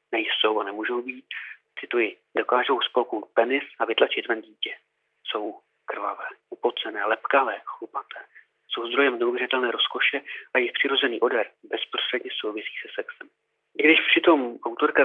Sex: male